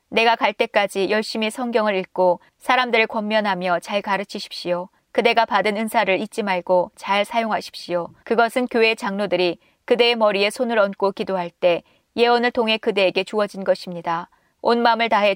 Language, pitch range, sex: Korean, 185-225 Hz, female